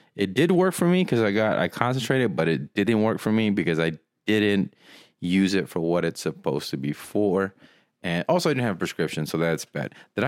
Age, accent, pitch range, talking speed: 30-49, American, 85-110 Hz, 230 wpm